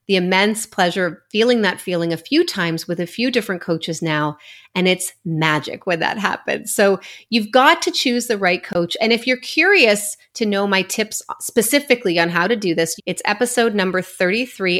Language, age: English, 30-49